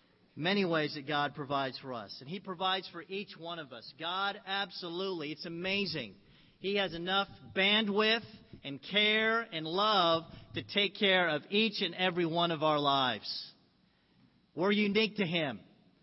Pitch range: 150-185 Hz